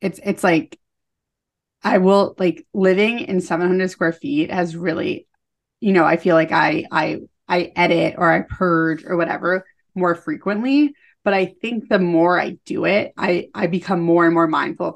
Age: 20-39